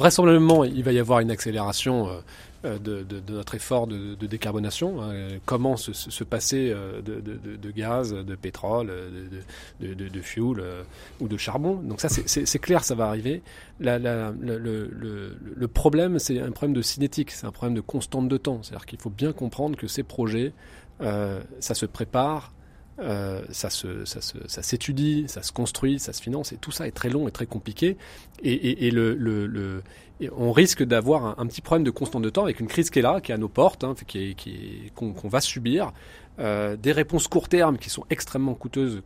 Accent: French